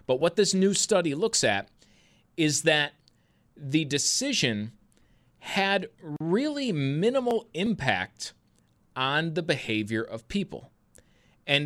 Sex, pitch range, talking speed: male, 115-165 Hz, 110 wpm